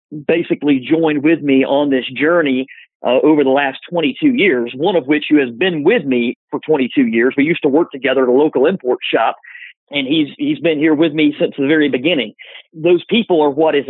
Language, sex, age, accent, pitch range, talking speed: English, male, 40-59, American, 140-195 Hz, 215 wpm